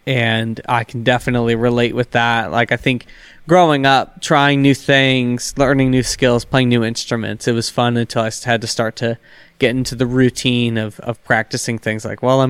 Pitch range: 120-140 Hz